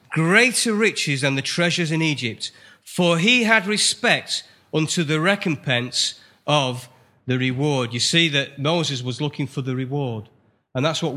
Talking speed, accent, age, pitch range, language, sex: 155 wpm, British, 40-59, 125-160 Hz, English, male